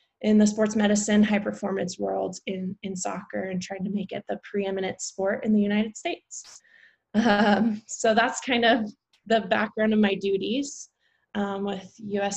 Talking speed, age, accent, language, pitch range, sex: 165 wpm, 20-39, American, English, 195-215 Hz, female